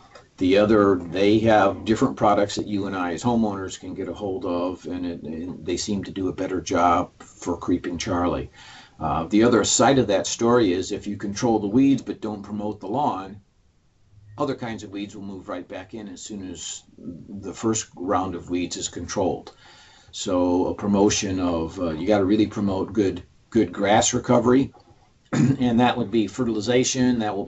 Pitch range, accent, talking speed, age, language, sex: 95-110 Hz, American, 190 wpm, 50-69, English, male